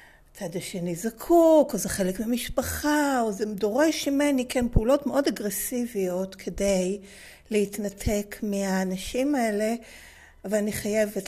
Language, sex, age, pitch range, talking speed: Hebrew, female, 60-79, 195-260 Hz, 110 wpm